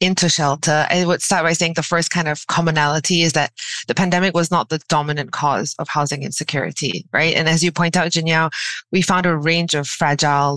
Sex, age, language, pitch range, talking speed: female, 20-39, English, 145-175 Hz, 210 wpm